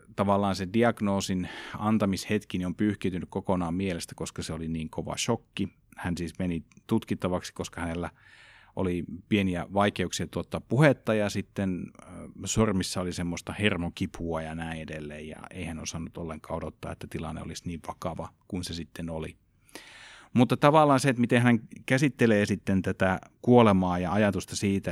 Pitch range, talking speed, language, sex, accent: 85-110 Hz, 150 wpm, Finnish, male, native